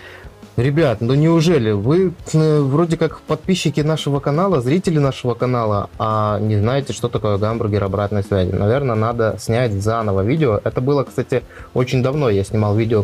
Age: 20-39